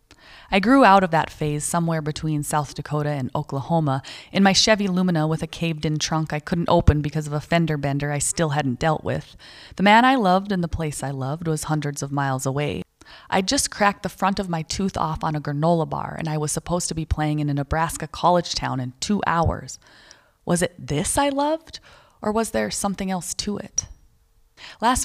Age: 20-39